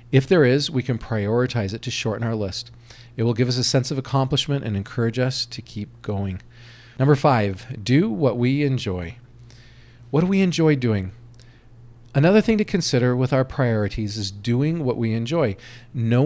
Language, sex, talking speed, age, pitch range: English, male, 180 wpm, 40-59, 115-135 Hz